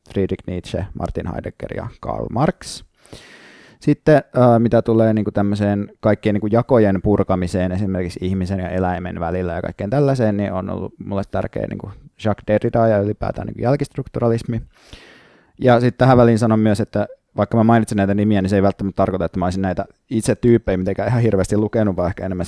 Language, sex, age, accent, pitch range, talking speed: Finnish, male, 20-39, native, 100-120 Hz, 160 wpm